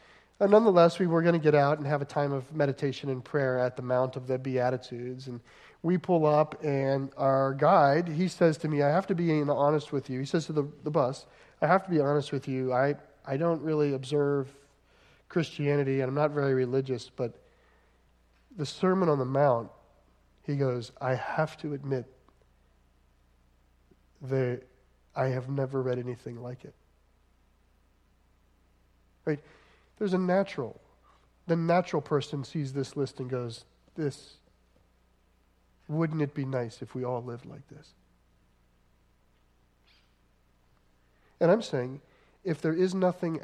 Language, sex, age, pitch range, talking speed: English, male, 40-59, 125-155 Hz, 155 wpm